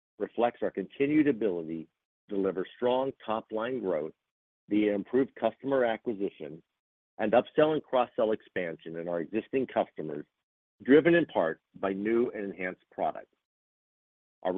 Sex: male